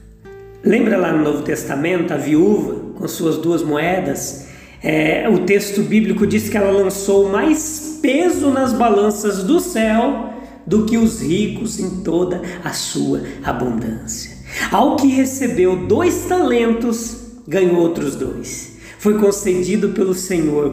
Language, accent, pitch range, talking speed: Portuguese, Brazilian, 175-240 Hz, 130 wpm